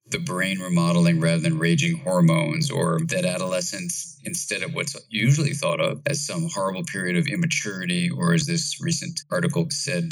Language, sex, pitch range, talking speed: English, male, 125-170 Hz, 165 wpm